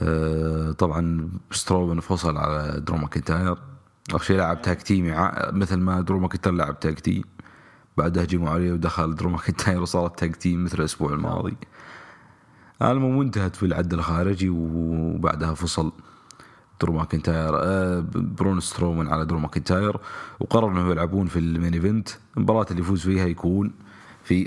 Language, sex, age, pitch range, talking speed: English, male, 30-49, 80-95 Hz, 120 wpm